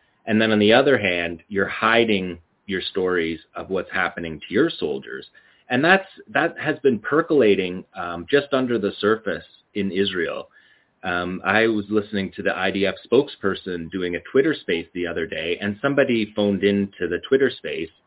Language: English